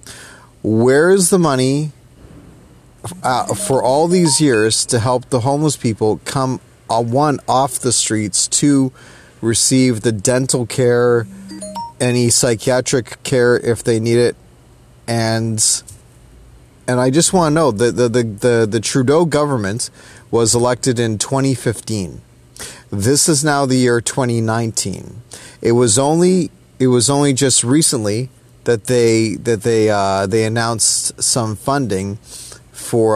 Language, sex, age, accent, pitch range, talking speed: English, male, 30-49, American, 115-135 Hz, 135 wpm